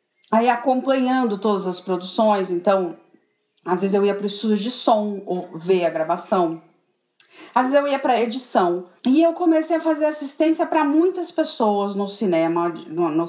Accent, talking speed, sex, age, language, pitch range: Brazilian, 165 wpm, female, 40-59, Portuguese, 195-295 Hz